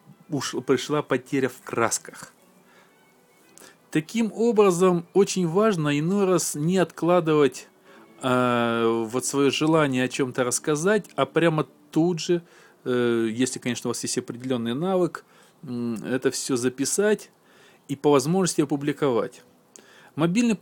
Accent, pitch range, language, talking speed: native, 125-175 Hz, Russian, 115 wpm